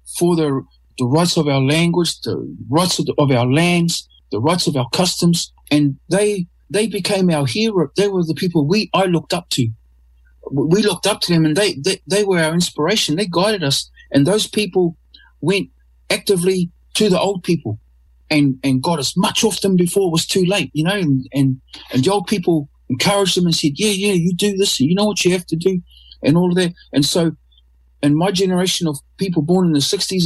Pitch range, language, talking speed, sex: 130-190 Hz, English, 215 wpm, male